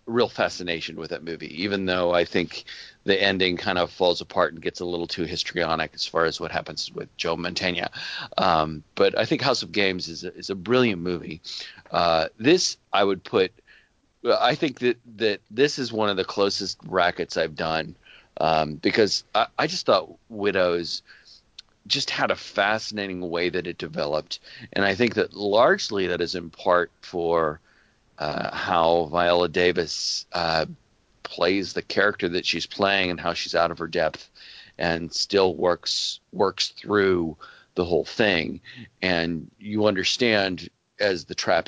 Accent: American